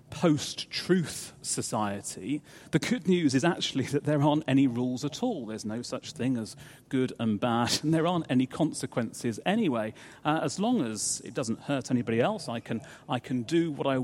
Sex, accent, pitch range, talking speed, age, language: male, British, 120-155 Hz, 190 wpm, 40-59, English